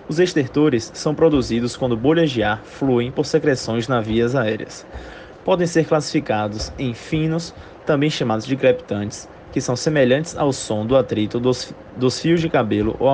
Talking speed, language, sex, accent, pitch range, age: 170 wpm, Portuguese, male, Brazilian, 115-145 Hz, 20-39